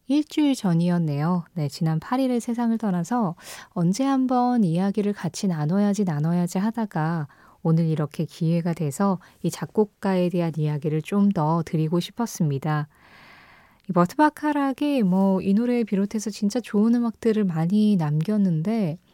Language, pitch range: Korean, 165-230 Hz